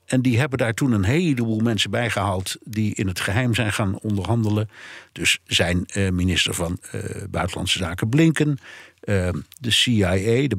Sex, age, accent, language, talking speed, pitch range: male, 60-79, Dutch, Dutch, 165 wpm, 95-120 Hz